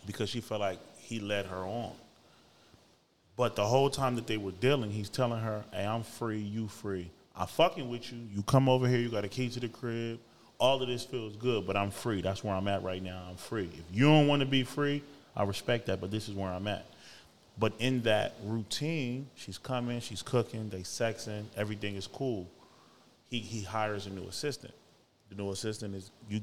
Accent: American